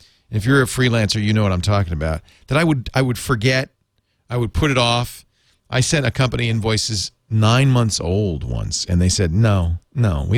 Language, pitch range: English, 100-130 Hz